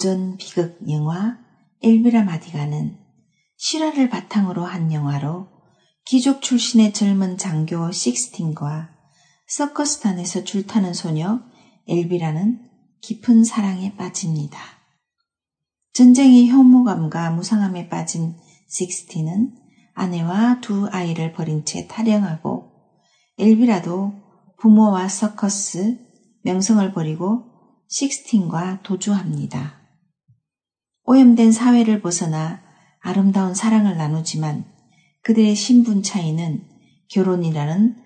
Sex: female